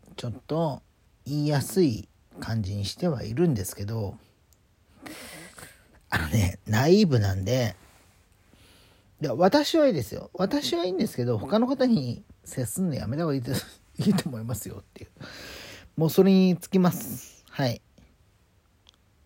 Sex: male